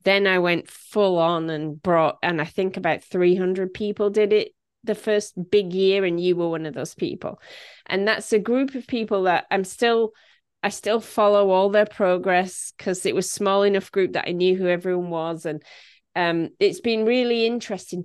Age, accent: 30-49, British